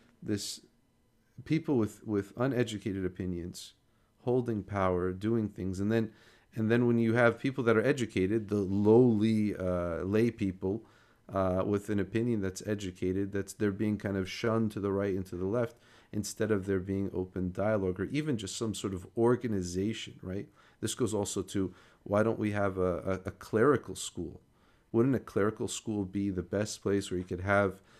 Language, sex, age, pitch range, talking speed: English, male, 40-59, 95-115 Hz, 180 wpm